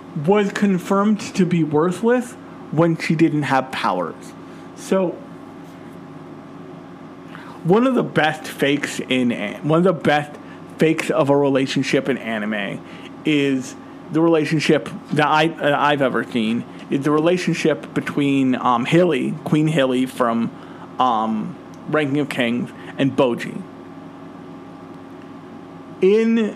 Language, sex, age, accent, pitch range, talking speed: English, male, 40-59, American, 135-185 Hz, 120 wpm